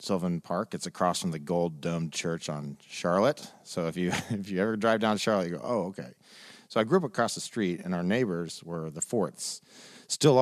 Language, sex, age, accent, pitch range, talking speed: English, male, 40-59, American, 85-130 Hz, 225 wpm